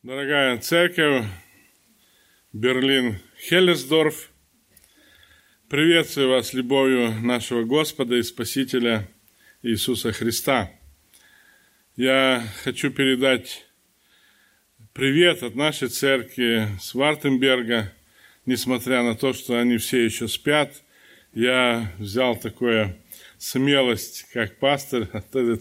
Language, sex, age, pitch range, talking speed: Russian, male, 20-39, 110-135 Hz, 85 wpm